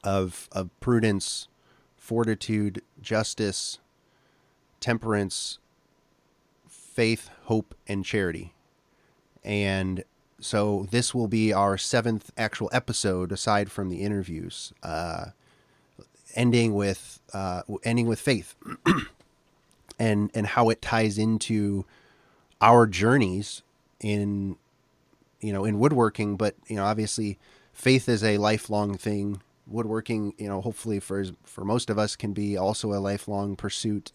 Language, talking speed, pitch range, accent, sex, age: English, 120 wpm, 95-110 Hz, American, male, 30-49